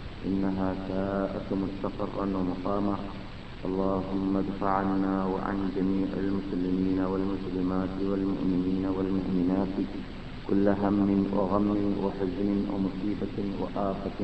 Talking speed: 90 wpm